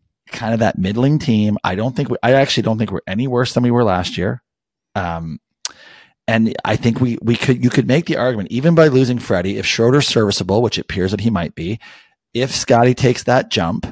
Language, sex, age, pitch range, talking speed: English, male, 30-49, 100-140 Hz, 220 wpm